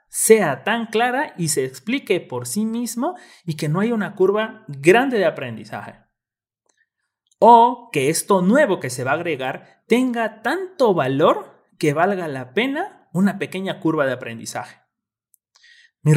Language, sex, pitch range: Spanish, male, 145-240 Hz